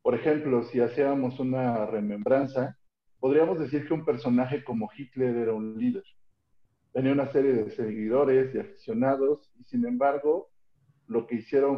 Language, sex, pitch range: Spanish, male, 120-165 Hz